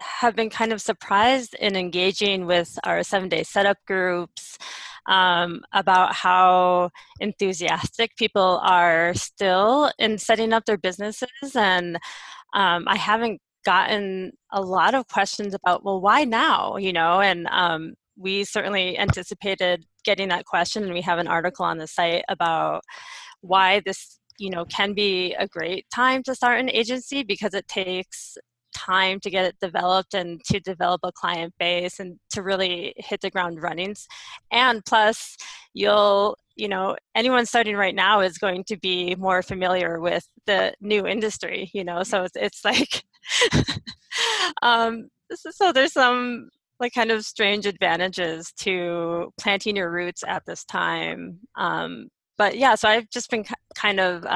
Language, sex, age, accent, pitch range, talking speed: English, female, 20-39, American, 180-220 Hz, 155 wpm